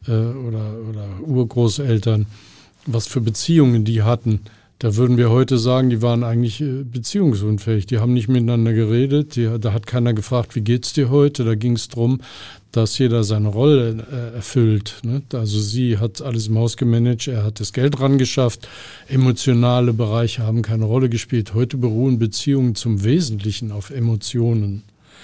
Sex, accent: male, German